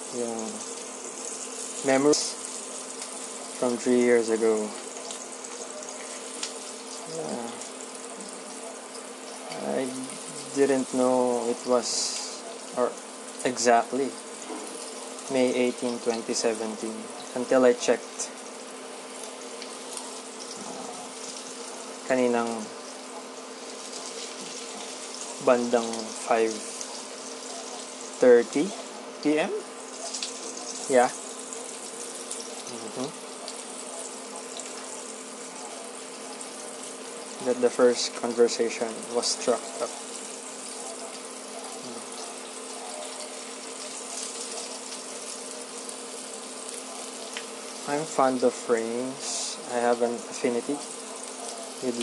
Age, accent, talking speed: 20-39, native, 50 wpm